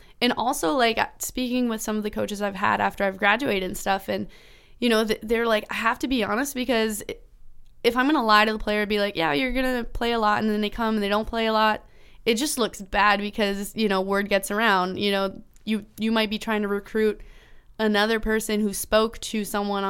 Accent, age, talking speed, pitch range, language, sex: American, 20-39, 230 wpm, 195-220 Hz, English, female